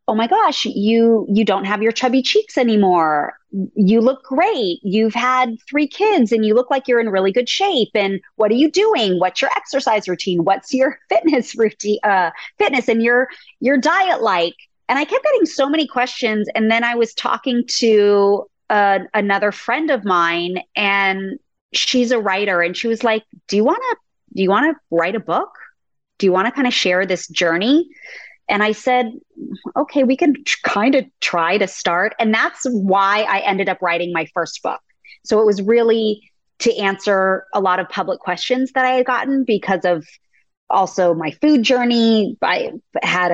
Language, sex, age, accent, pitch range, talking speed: English, female, 30-49, American, 195-265 Hz, 190 wpm